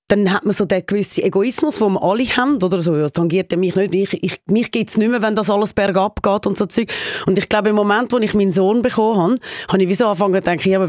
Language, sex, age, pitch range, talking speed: German, female, 30-49, 190-225 Hz, 285 wpm